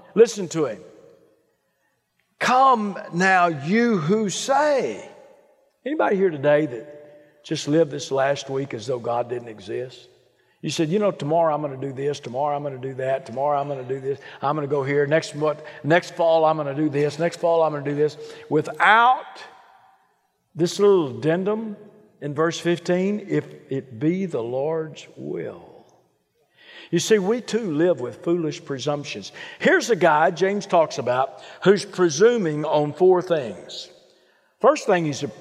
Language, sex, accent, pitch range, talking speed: English, male, American, 145-200 Hz, 170 wpm